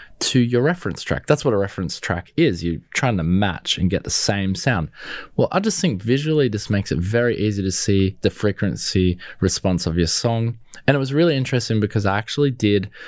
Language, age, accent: English, 20-39, Australian